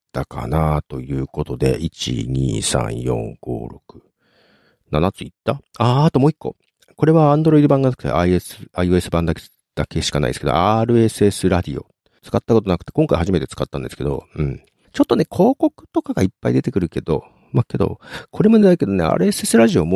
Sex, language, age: male, Japanese, 50-69